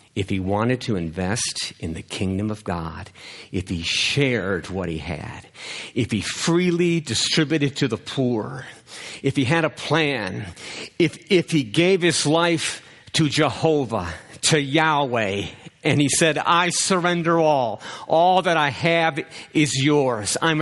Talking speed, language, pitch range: 150 wpm, English, 130-185 Hz